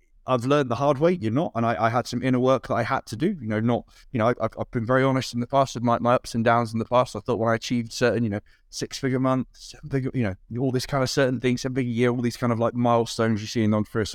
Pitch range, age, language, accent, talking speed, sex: 115-135 Hz, 20-39, English, British, 315 wpm, male